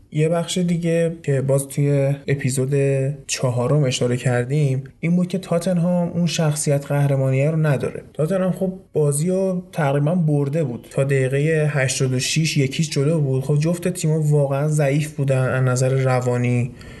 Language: Persian